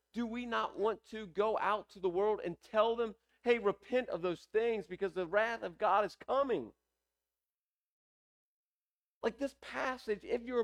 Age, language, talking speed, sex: 40-59, English, 170 wpm, male